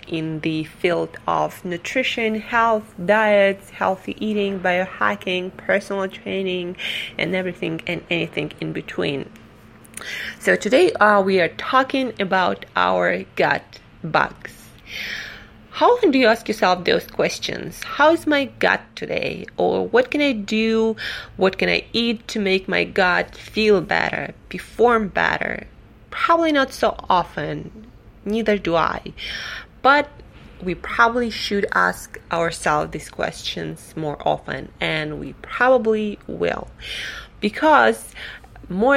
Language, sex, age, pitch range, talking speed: English, female, 20-39, 170-225 Hz, 125 wpm